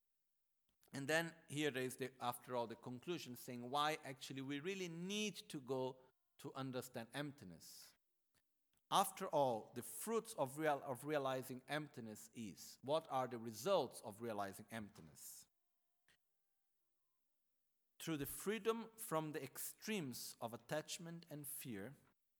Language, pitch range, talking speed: Italian, 115-160 Hz, 120 wpm